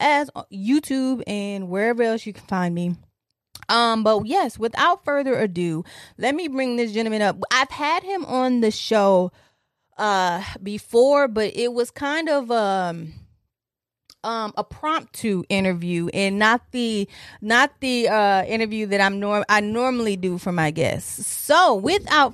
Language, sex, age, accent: English, female, 20-39, American